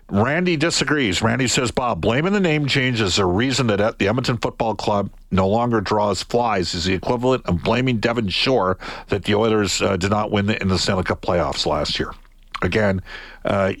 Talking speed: 190 wpm